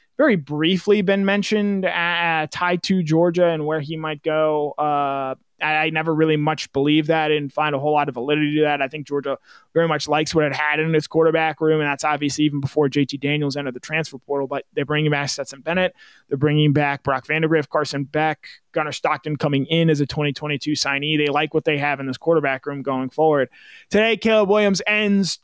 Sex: male